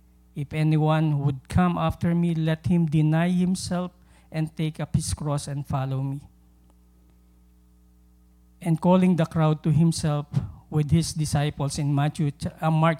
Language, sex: English, male